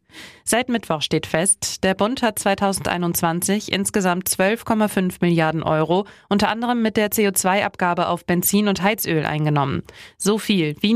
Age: 30-49